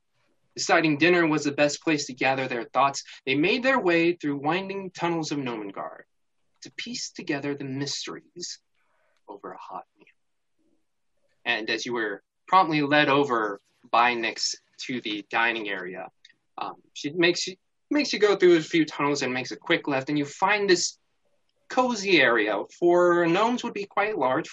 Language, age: English, 20-39